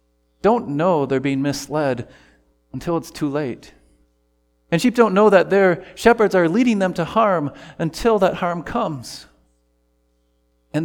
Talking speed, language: 145 wpm, English